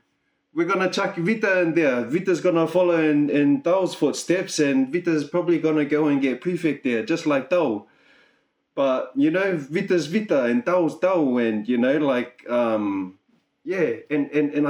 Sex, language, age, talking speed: male, English, 20-39, 170 wpm